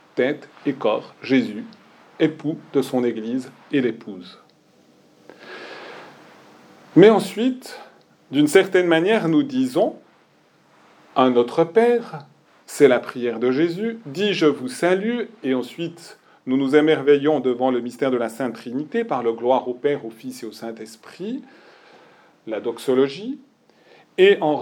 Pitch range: 145-210 Hz